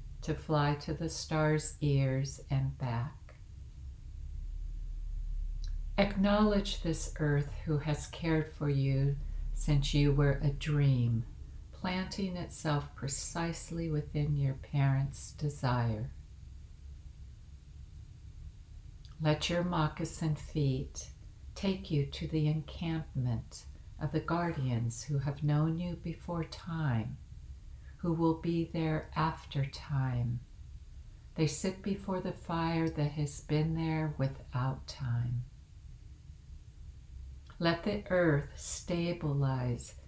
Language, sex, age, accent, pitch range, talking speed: English, female, 60-79, American, 100-160 Hz, 100 wpm